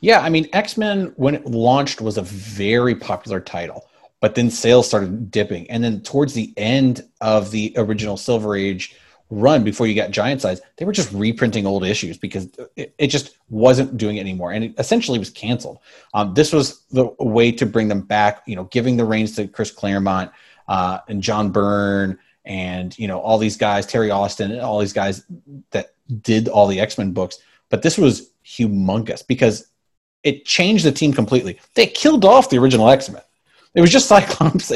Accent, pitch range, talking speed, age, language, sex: American, 105-140 Hz, 190 wpm, 30-49, English, male